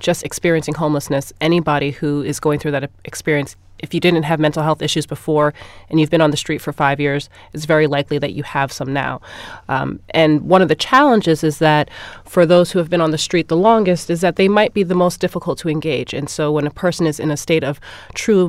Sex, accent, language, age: female, American, English, 30-49